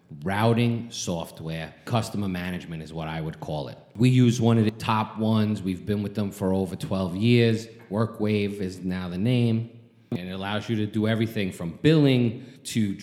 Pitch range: 90-115 Hz